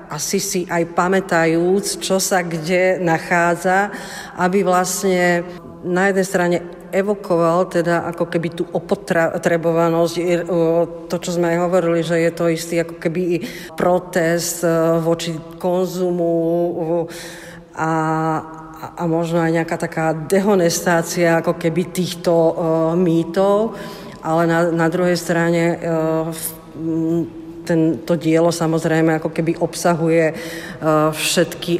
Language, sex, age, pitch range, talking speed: Slovak, female, 40-59, 165-180 Hz, 105 wpm